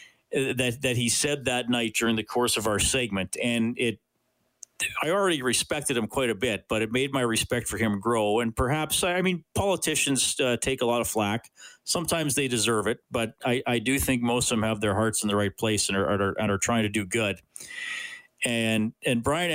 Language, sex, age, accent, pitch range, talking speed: English, male, 40-59, American, 115-145 Hz, 215 wpm